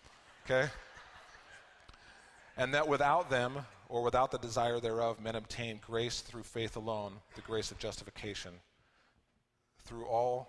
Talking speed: 125 wpm